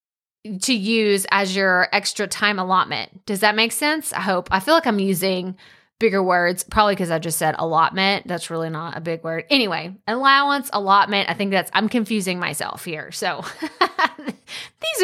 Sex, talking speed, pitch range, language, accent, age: female, 175 wpm, 190-275 Hz, English, American, 20-39